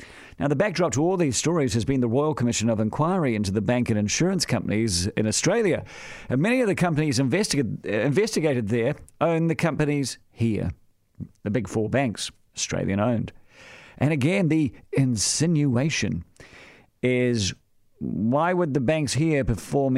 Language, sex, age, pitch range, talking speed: English, male, 50-69, 115-150 Hz, 155 wpm